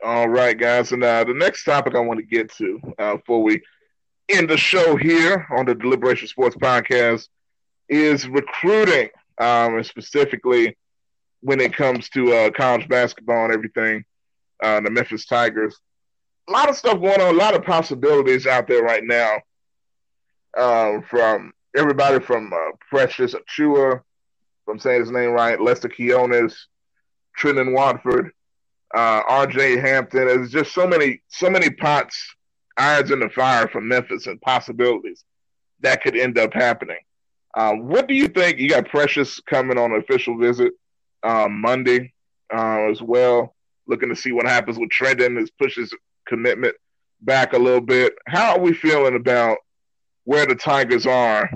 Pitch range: 120-185 Hz